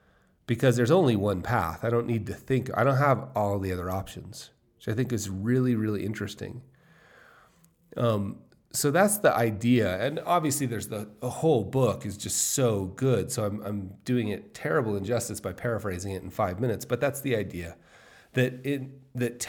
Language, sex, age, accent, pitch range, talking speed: English, male, 30-49, American, 105-135 Hz, 180 wpm